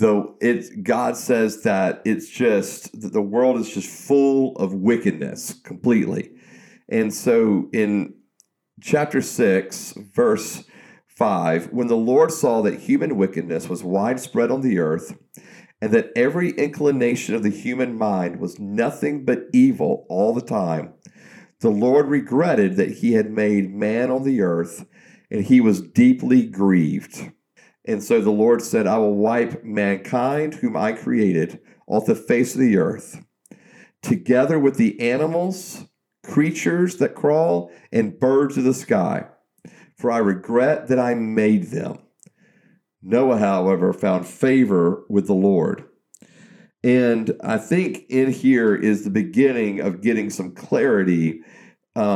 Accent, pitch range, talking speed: American, 105-155 Hz, 135 wpm